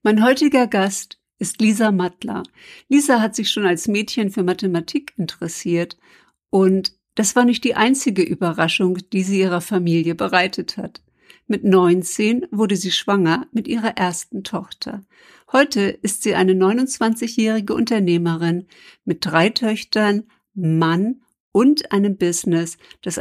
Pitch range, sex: 185-230 Hz, female